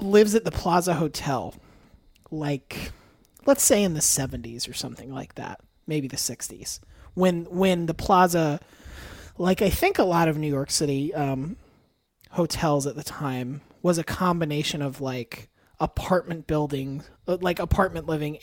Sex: male